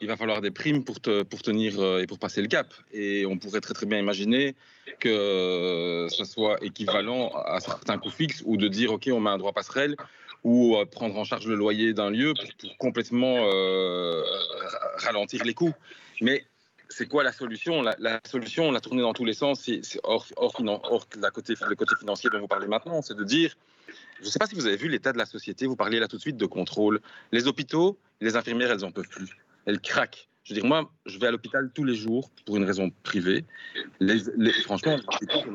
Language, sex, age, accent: French, male, 40-59, French